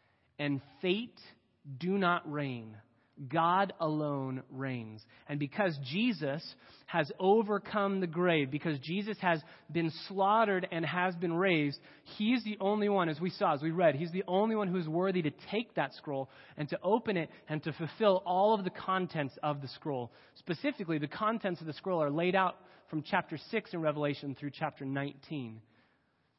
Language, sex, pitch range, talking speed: English, male, 135-185 Hz, 170 wpm